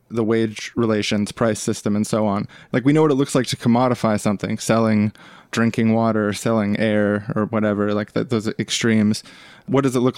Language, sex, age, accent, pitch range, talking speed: English, male, 20-39, American, 105-120 Hz, 200 wpm